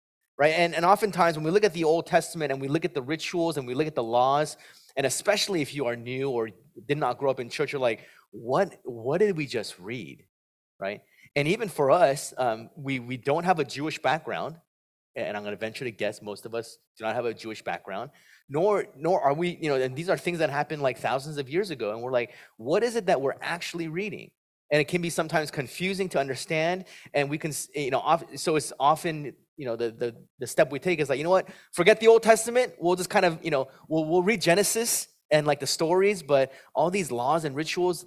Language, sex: English, male